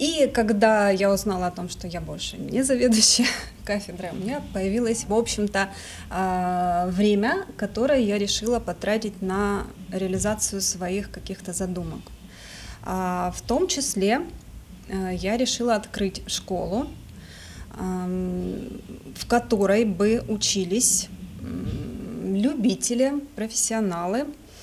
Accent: native